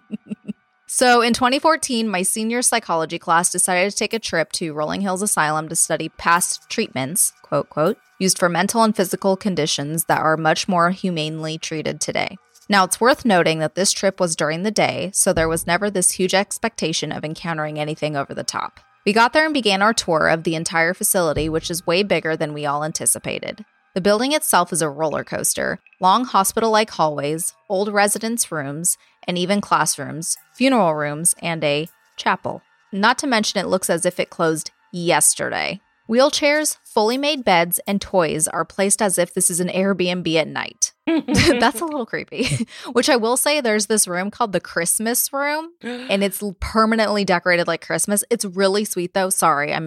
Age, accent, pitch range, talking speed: 20-39, American, 165-220 Hz, 185 wpm